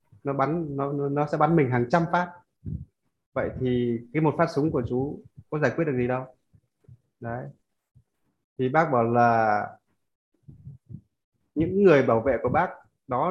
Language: Vietnamese